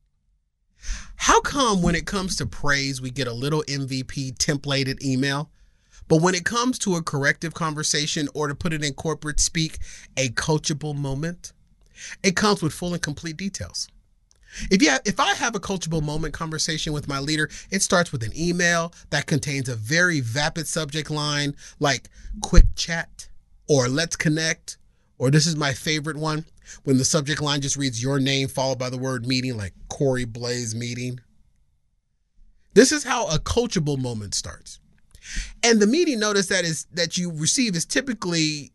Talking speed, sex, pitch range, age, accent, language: 170 wpm, male, 140-195 Hz, 30-49, American, English